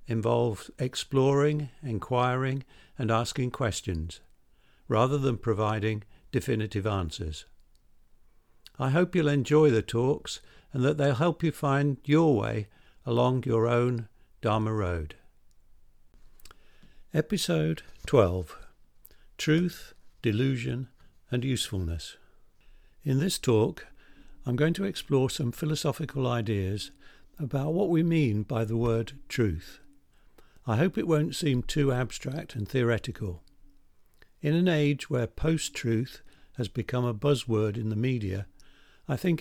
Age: 60-79